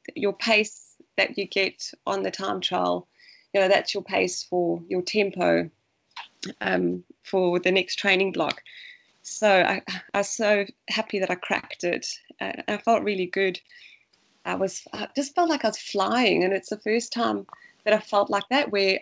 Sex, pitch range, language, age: female, 190-225 Hz, English, 20-39